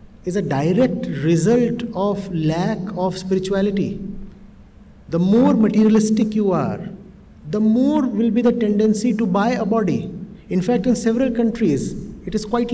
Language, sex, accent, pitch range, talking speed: English, male, Indian, 205-260 Hz, 145 wpm